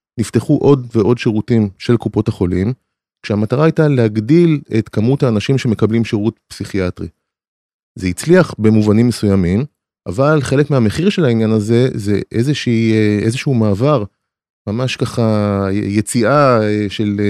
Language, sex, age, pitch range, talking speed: Hebrew, male, 20-39, 105-125 Hz, 120 wpm